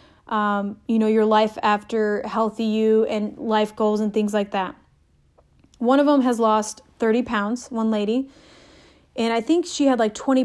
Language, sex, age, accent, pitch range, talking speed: English, female, 30-49, American, 215-265 Hz, 180 wpm